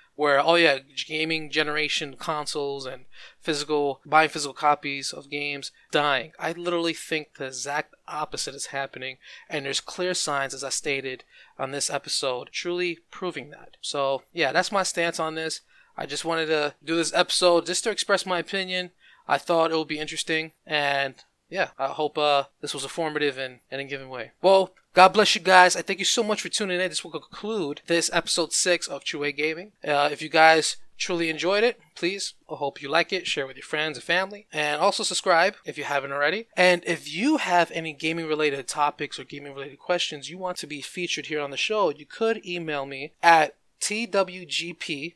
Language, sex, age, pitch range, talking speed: English, male, 20-39, 145-175 Hz, 200 wpm